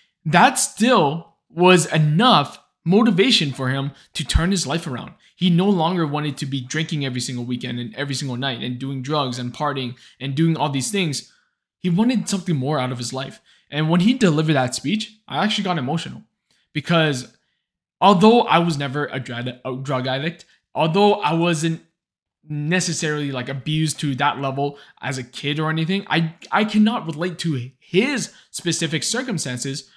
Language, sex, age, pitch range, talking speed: English, male, 20-39, 145-195 Hz, 170 wpm